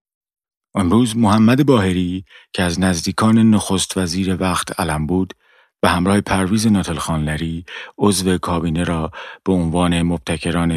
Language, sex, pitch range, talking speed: Persian, male, 80-100 Hz, 115 wpm